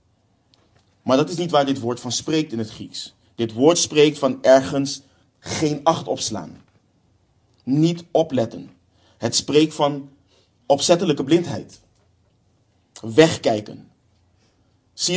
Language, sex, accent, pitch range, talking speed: Dutch, male, Dutch, 110-150 Hz, 115 wpm